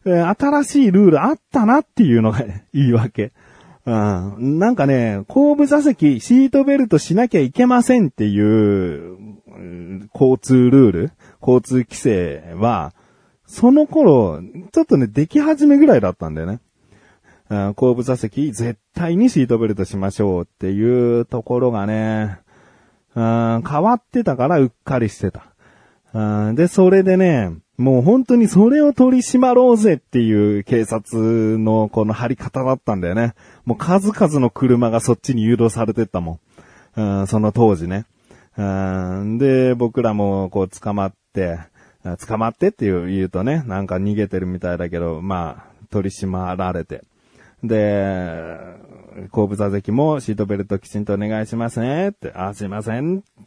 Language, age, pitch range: Japanese, 30-49, 100-155 Hz